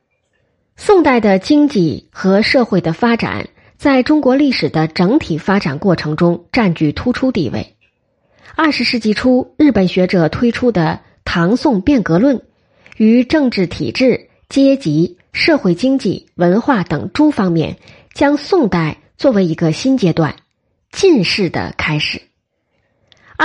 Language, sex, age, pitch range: Chinese, female, 20-39, 175-265 Hz